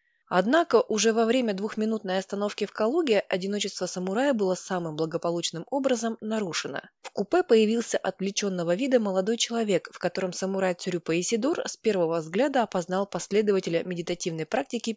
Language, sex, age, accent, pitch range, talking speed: Russian, female, 20-39, native, 180-225 Hz, 135 wpm